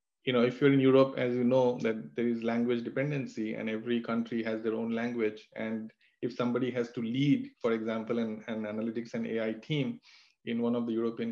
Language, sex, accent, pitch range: English, male, Indian, 110-125 Hz